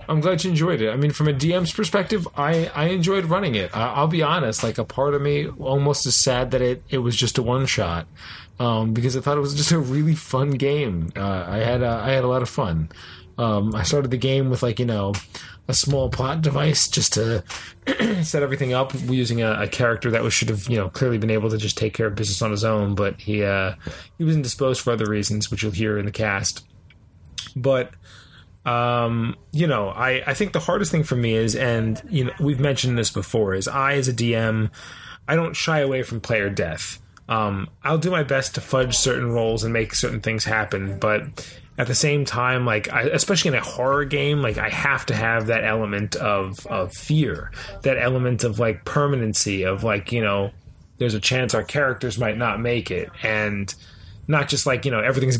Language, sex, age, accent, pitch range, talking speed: English, male, 20-39, American, 105-135 Hz, 220 wpm